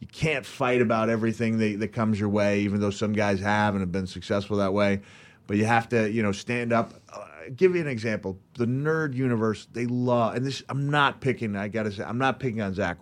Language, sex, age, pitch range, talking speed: English, male, 30-49, 110-140 Hz, 245 wpm